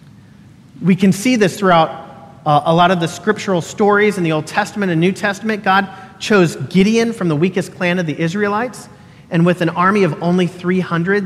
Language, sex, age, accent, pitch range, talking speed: English, male, 40-59, American, 150-180 Hz, 185 wpm